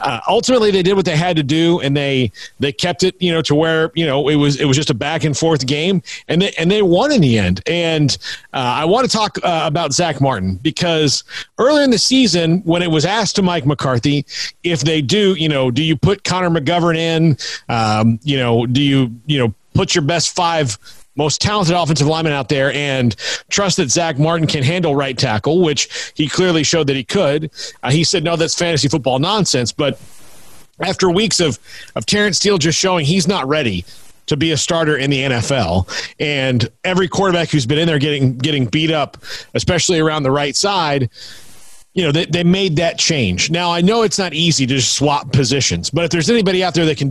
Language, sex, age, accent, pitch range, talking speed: English, male, 40-59, American, 135-170 Hz, 220 wpm